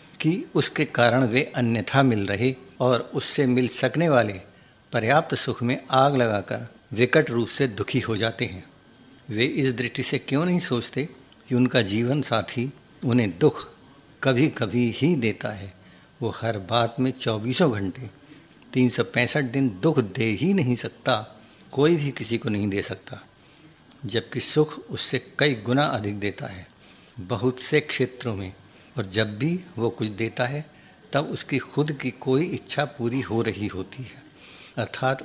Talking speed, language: 160 wpm, Hindi